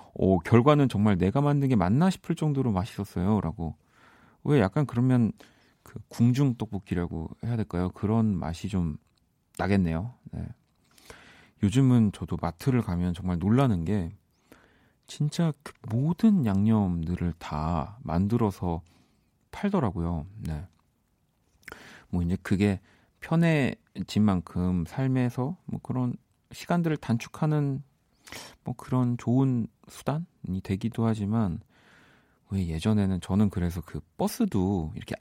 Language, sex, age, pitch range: Korean, male, 40-59, 90-125 Hz